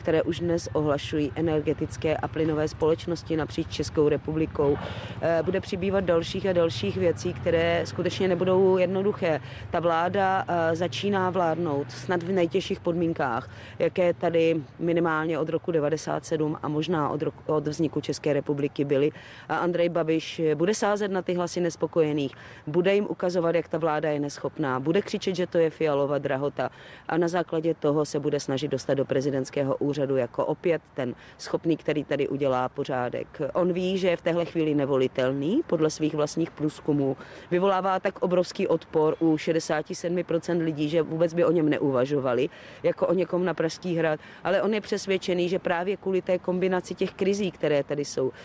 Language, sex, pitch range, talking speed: Czech, female, 145-180 Hz, 165 wpm